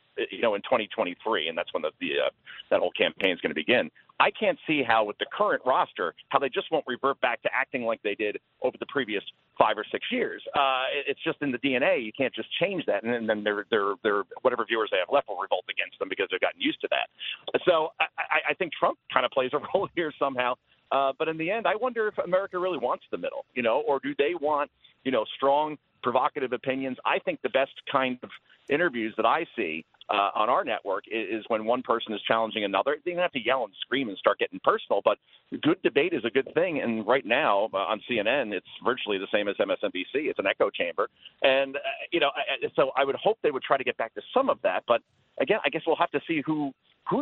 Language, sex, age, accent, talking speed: English, male, 40-59, American, 240 wpm